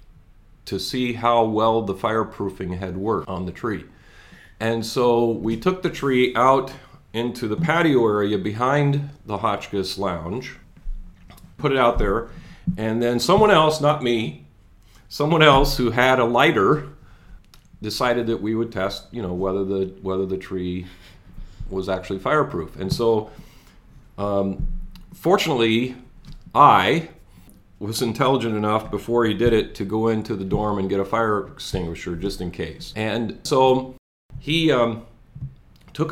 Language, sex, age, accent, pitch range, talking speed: English, male, 40-59, American, 100-130 Hz, 145 wpm